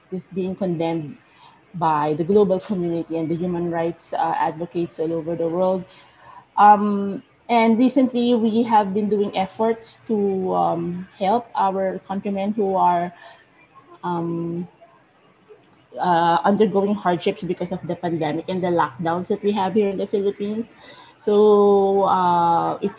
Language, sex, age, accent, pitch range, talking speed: English, female, 20-39, Filipino, 175-210 Hz, 140 wpm